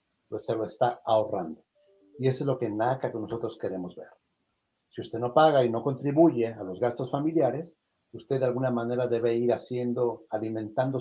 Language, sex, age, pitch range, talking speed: Spanish, male, 50-69, 110-130 Hz, 185 wpm